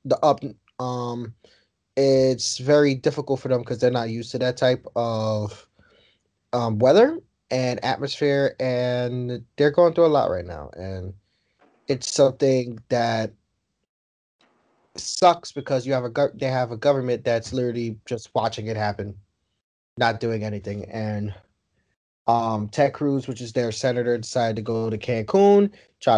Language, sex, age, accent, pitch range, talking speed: English, male, 20-39, American, 110-135 Hz, 145 wpm